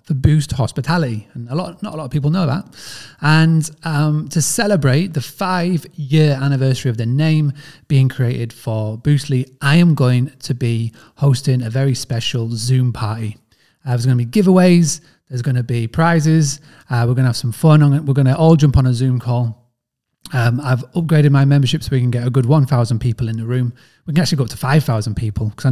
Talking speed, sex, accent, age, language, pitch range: 210 wpm, male, British, 30-49, English, 120-145 Hz